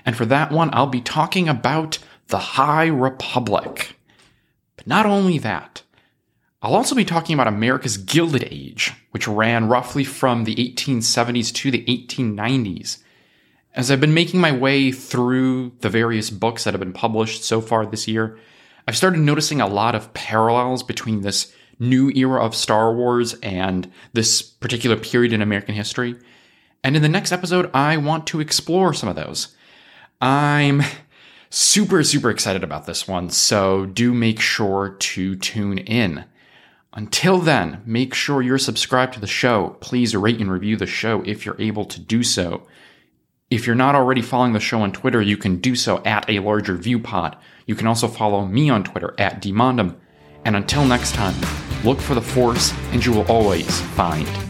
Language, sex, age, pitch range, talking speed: English, male, 30-49, 105-135 Hz, 175 wpm